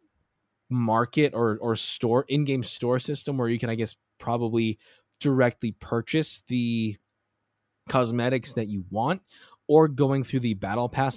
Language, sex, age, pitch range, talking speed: English, male, 20-39, 110-140 Hz, 140 wpm